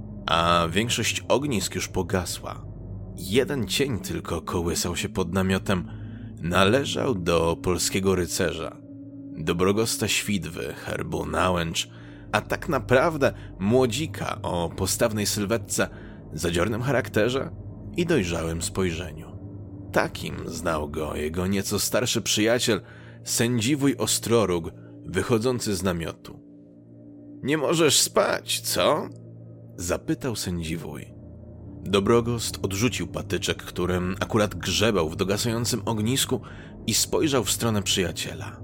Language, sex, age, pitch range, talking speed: Polish, male, 30-49, 95-120 Hz, 100 wpm